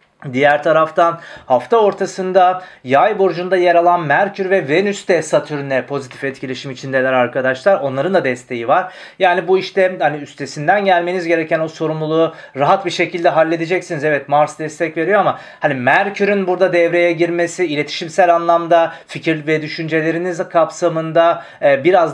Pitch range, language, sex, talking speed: 150-180 Hz, Turkish, male, 135 wpm